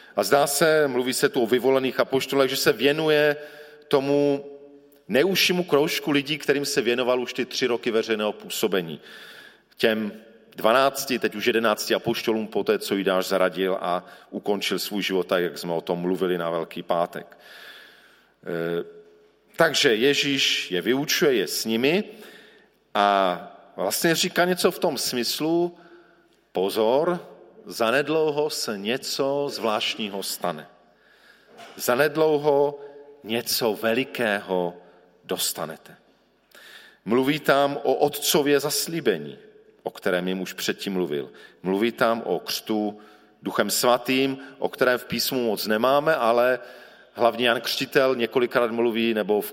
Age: 40-59